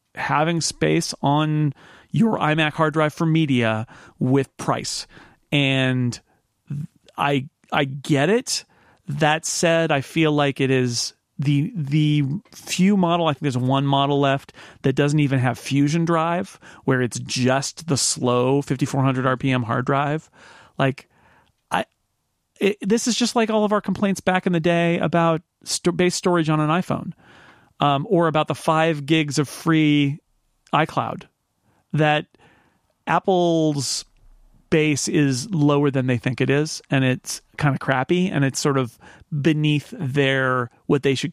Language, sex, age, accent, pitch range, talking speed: English, male, 40-59, American, 135-165 Hz, 150 wpm